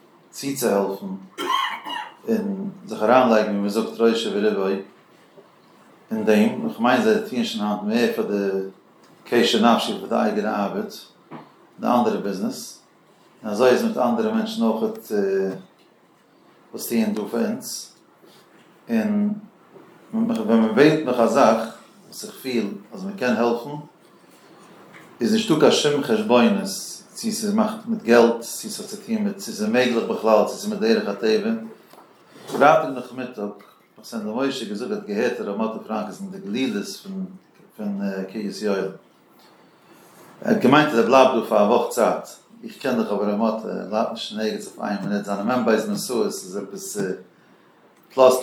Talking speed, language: 85 wpm, Hebrew